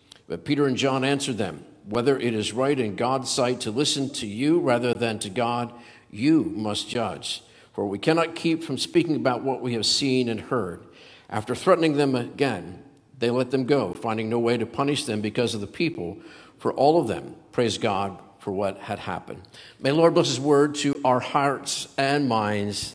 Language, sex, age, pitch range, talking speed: English, male, 50-69, 120-155 Hz, 200 wpm